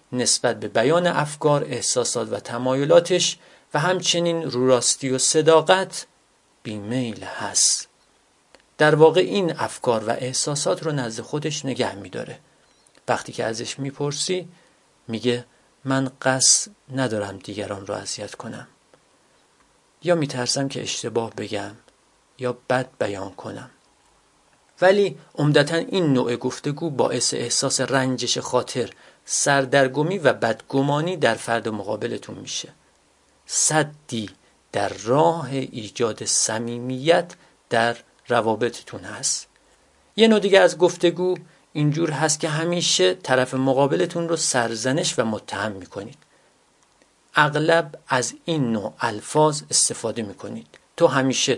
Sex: male